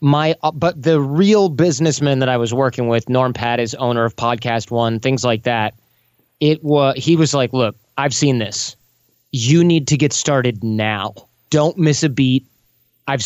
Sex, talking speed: male, 180 wpm